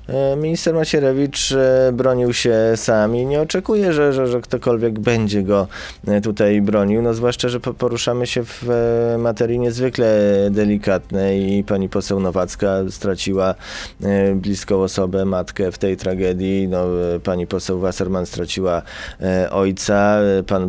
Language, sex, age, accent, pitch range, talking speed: Polish, male, 20-39, native, 95-115 Hz, 120 wpm